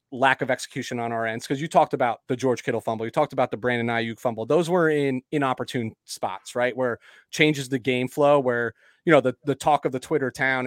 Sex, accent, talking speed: male, American, 235 wpm